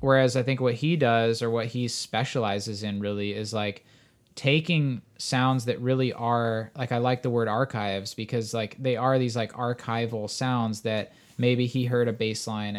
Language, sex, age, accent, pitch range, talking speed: English, male, 20-39, American, 105-125 Hz, 185 wpm